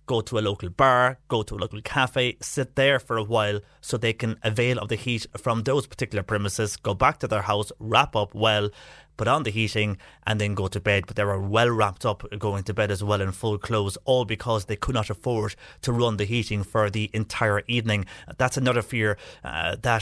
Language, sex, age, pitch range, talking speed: English, male, 30-49, 105-130 Hz, 230 wpm